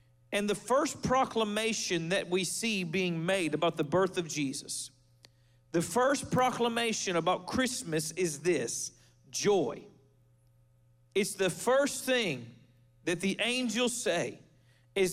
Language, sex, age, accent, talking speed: English, male, 40-59, American, 125 wpm